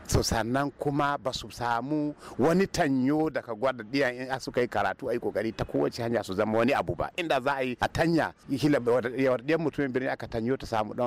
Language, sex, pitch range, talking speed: English, male, 115-150 Hz, 155 wpm